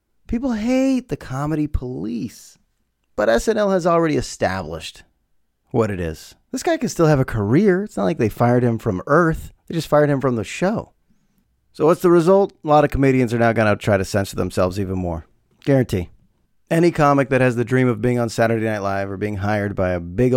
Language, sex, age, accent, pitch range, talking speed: English, male, 30-49, American, 105-145 Hz, 210 wpm